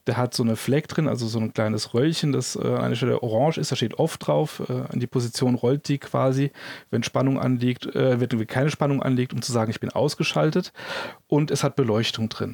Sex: male